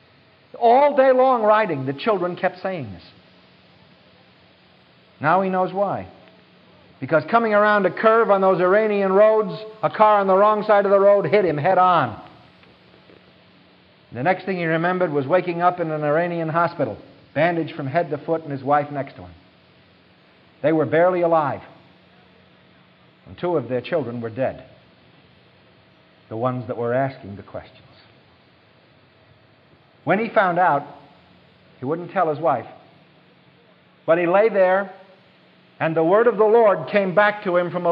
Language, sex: English, male